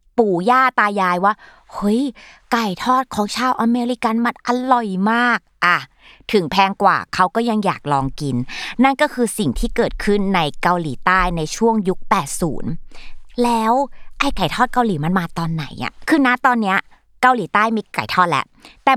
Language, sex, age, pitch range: Thai, female, 20-39, 175-245 Hz